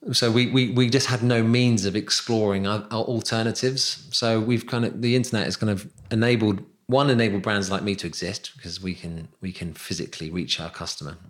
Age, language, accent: 30-49, English, British